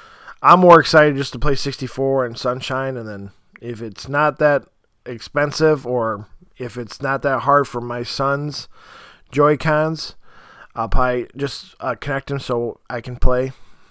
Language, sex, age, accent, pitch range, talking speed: English, male, 20-39, American, 125-155 Hz, 160 wpm